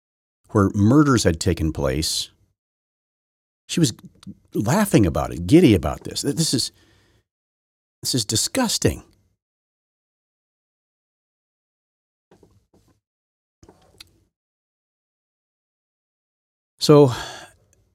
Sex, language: male, English